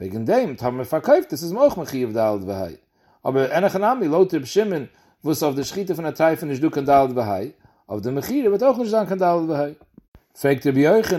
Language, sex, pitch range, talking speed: English, male, 140-195 Hz, 160 wpm